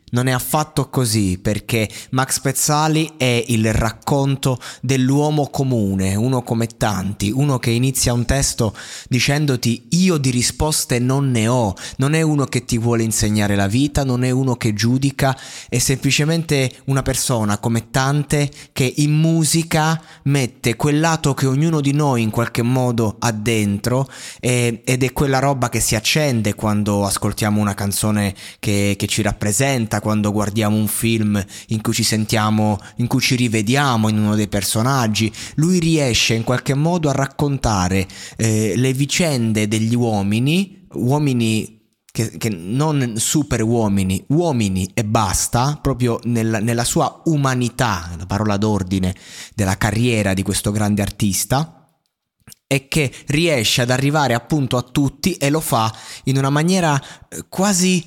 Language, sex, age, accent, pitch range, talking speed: Italian, male, 20-39, native, 110-140 Hz, 145 wpm